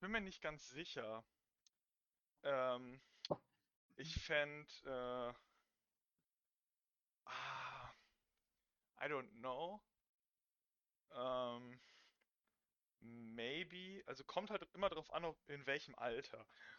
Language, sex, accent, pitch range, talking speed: German, male, German, 130-195 Hz, 80 wpm